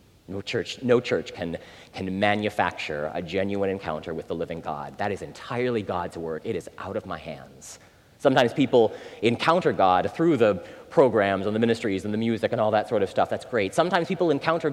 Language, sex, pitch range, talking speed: English, male, 95-135 Hz, 200 wpm